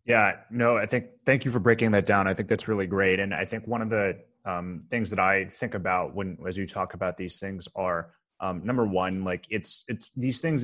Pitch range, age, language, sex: 95-115 Hz, 30-49, English, male